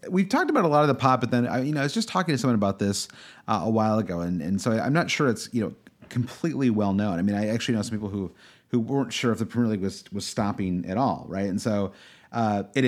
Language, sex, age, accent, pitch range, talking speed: English, male, 30-49, American, 100-125 Hz, 285 wpm